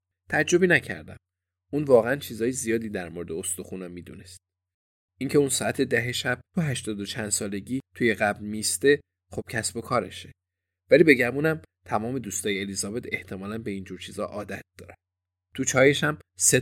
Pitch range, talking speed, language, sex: 95-125 Hz, 150 wpm, Persian, male